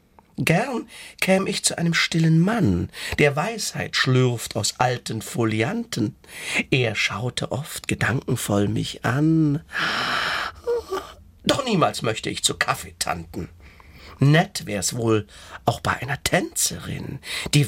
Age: 50-69